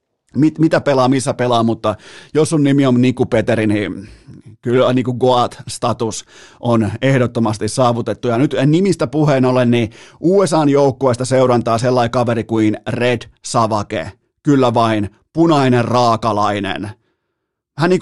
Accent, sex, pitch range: native, male, 110-140 Hz